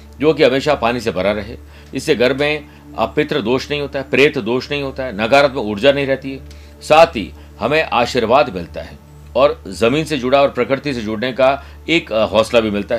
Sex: male